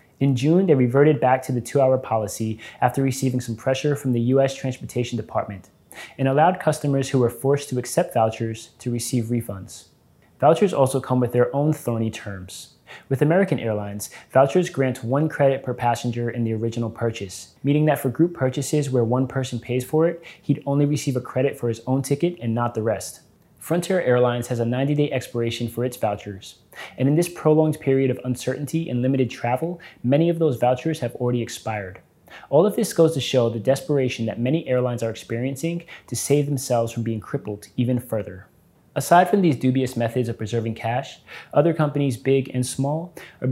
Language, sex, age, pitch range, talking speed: English, male, 20-39, 120-145 Hz, 190 wpm